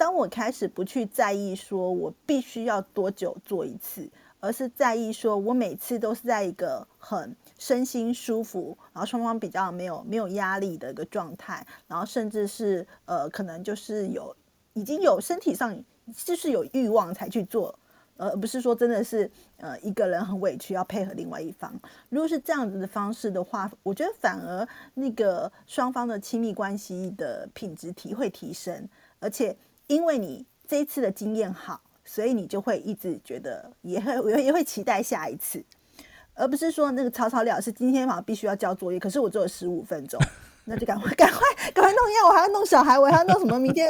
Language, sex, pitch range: Chinese, female, 200-270 Hz